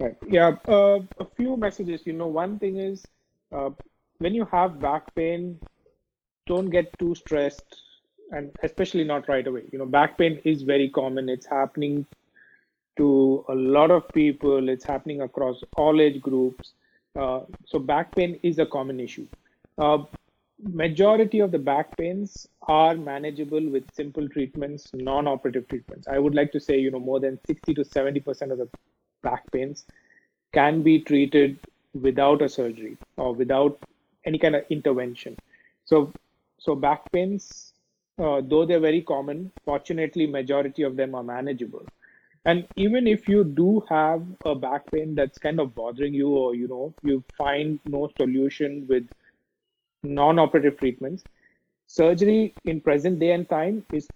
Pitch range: 140-170 Hz